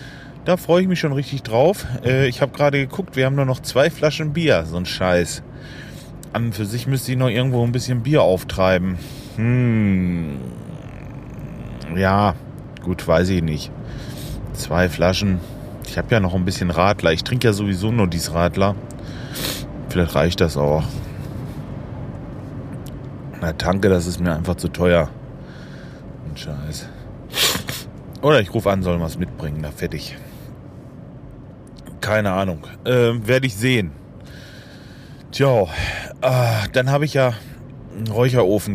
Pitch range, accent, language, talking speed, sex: 90-130 Hz, German, German, 140 wpm, male